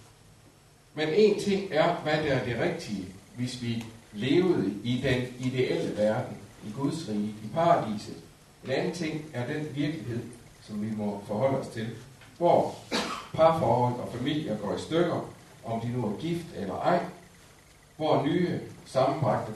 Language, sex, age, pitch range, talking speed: Danish, male, 60-79, 105-140 Hz, 155 wpm